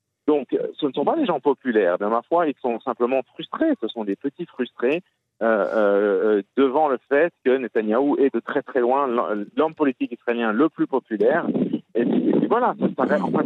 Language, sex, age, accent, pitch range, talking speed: French, male, 40-59, French, 110-160 Hz, 200 wpm